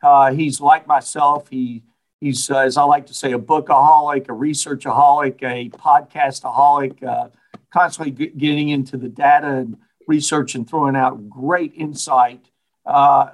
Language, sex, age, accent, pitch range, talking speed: English, male, 50-69, American, 135-160 Hz, 145 wpm